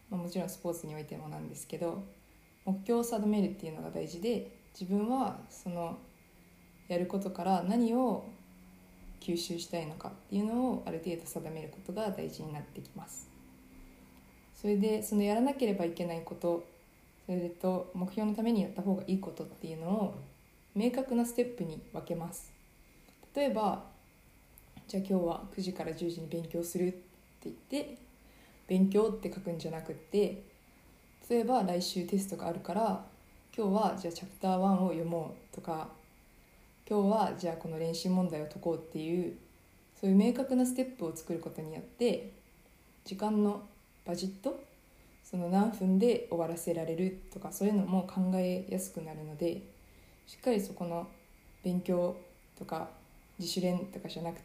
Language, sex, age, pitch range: Japanese, female, 20-39, 165-205 Hz